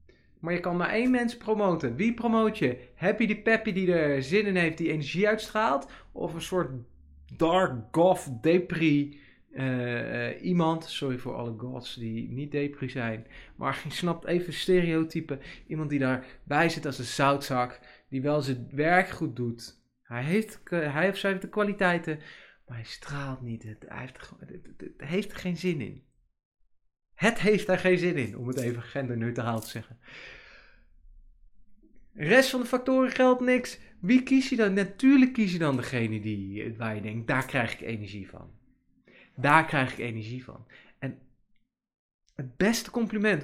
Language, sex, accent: Dutch, male, Dutch